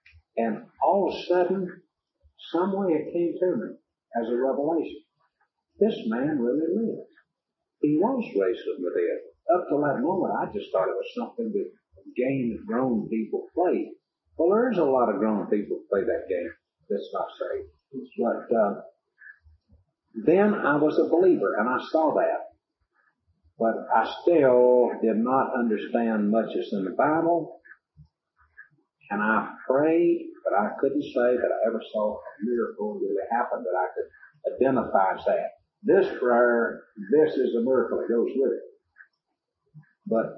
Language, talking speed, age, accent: English, 160 wpm, 50-69, American